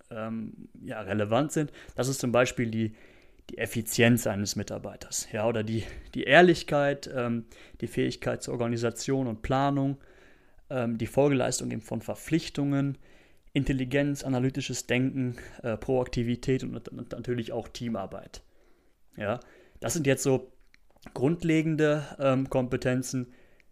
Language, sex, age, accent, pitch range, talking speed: German, male, 30-49, German, 115-140 Hz, 110 wpm